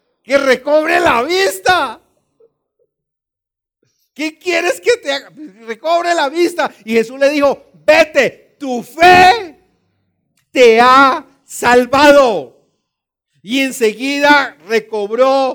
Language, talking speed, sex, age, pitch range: English, 95 wpm, male, 50-69, 210-290 Hz